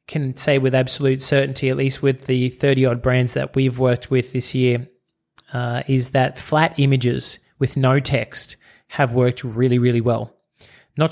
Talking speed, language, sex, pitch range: 165 wpm, English, male, 125-135 Hz